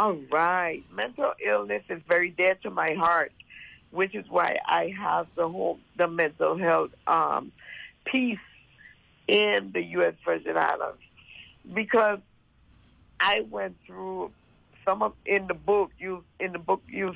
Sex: female